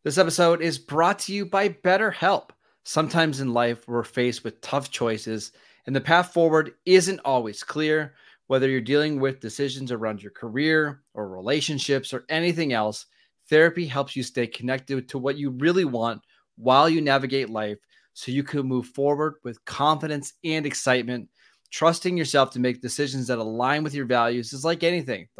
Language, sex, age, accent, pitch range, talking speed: English, male, 20-39, American, 125-155 Hz, 170 wpm